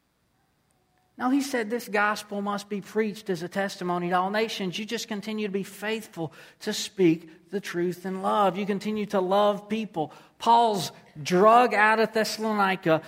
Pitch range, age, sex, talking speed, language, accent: 165-210 Hz, 40-59, male, 165 wpm, English, American